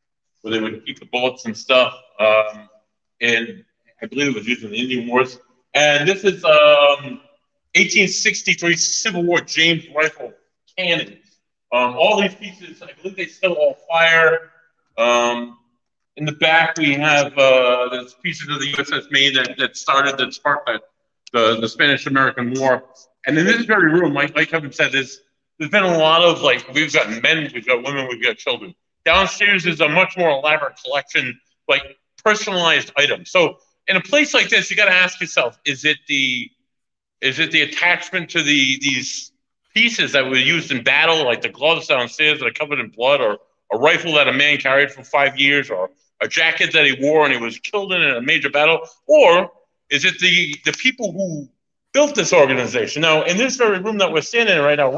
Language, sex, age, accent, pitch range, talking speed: English, male, 50-69, American, 135-185 Hz, 190 wpm